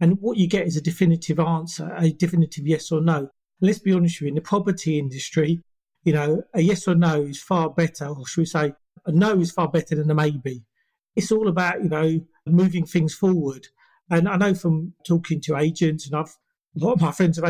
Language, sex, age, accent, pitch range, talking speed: English, male, 40-59, British, 155-180 Hz, 230 wpm